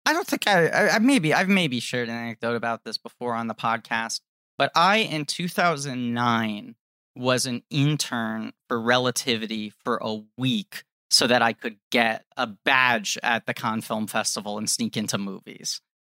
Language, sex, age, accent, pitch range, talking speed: English, male, 30-49, American, 115-150 Hz, 170 wpm